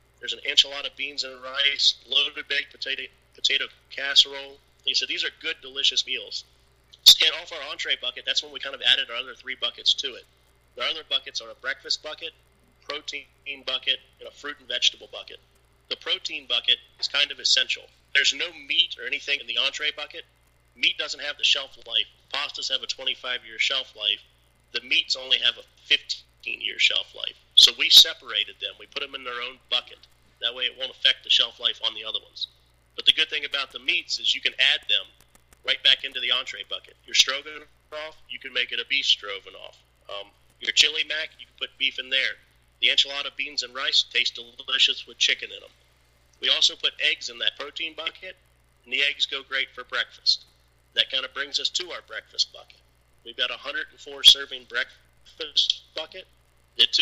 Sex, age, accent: male, 40-59, American